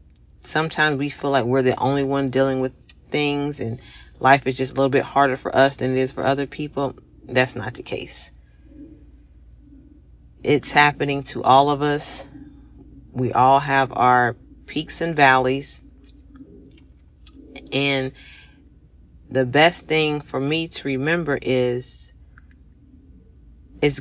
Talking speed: 135 wpm